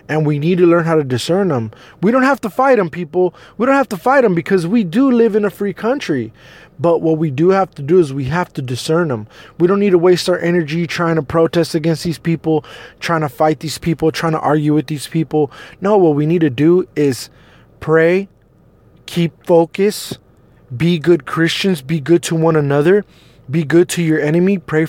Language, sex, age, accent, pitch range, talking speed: English, male, 20-39, American, 155-180 Hz, 220 wpm